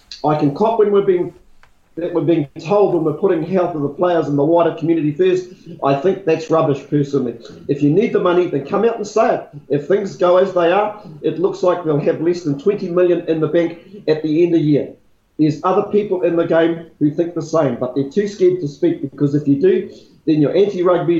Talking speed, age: 240 wpm, 40-59